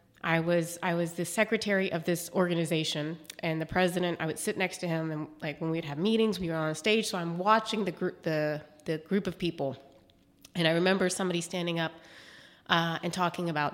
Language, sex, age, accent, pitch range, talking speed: English, female, 30-49, American, 165-210 Hz, 215 wpm